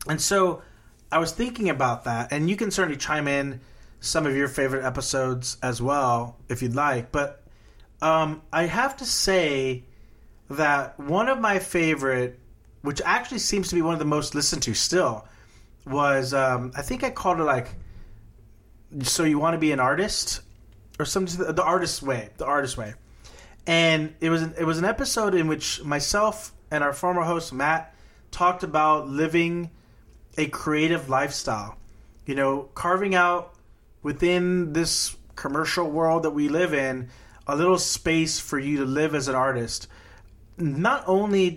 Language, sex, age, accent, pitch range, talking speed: English, male, 30-49, American, 125-165 Hz, 165 wpm